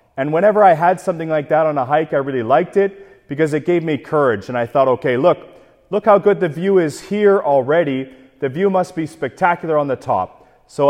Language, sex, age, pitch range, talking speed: English, male, 40-59, 145-175 Hz, 225 wpm